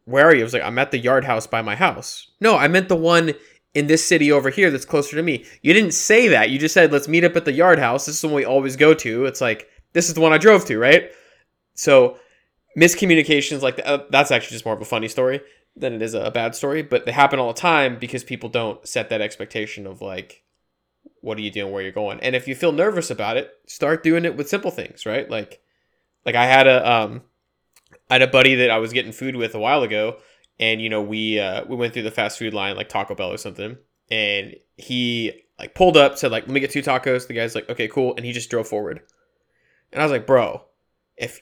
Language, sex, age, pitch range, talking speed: English, male, 20-39, 115-160 Hz, 255 wpm